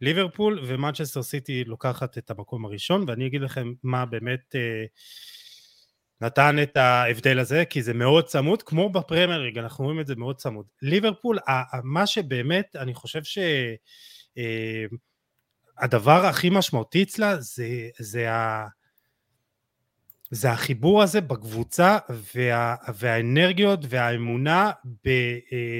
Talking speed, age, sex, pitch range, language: 100 wpm, 30-49, male, 120-160 Hz, Hebrew